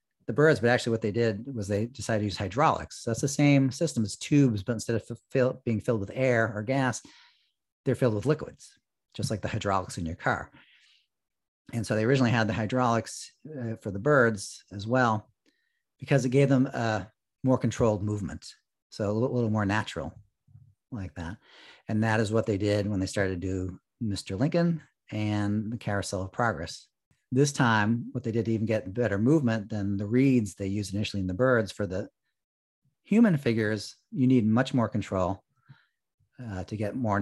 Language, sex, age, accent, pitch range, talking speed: English, male, 40-59, American, 105-125 Hz, 190 wpm